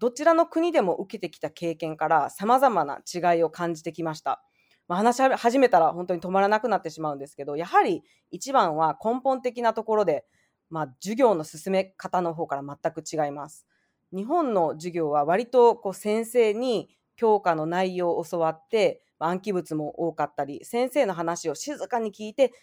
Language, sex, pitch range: Japanese, female, 165-245 Hz